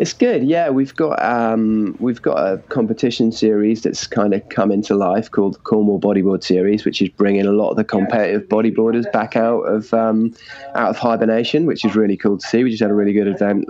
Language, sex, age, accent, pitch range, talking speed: English, male, 20-39, British, 105-115 Hz, 225 wpm